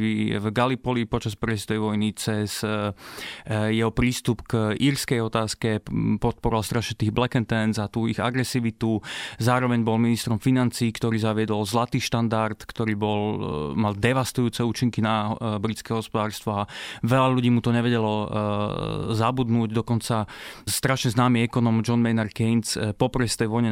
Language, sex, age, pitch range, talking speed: Slovak, male, 20-39, 110-120 Hz, 135 wpm